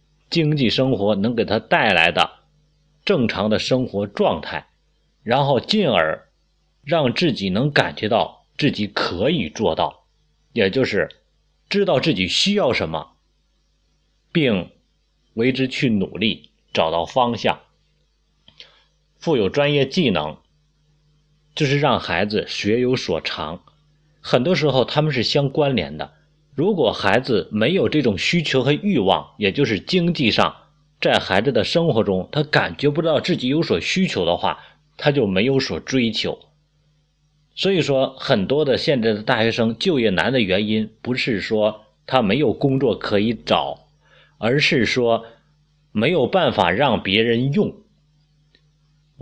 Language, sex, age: Chinese, male, 30-49